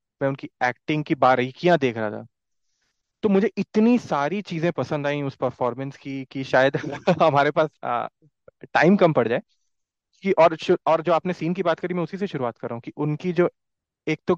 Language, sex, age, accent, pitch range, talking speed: Hindi, male, 30-49, native, 130-165 Hz, 190 wpm